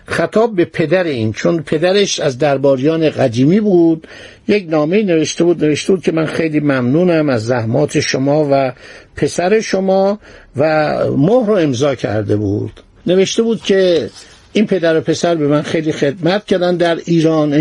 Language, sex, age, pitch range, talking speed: Persian, male, 60-79, 140-185 Hz, 155 wpm